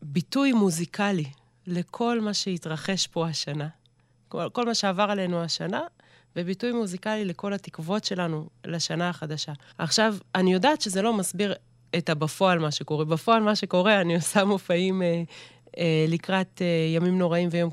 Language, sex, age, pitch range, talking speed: Hebrew, female, 20-39, 155-195 Hz, 145 wpm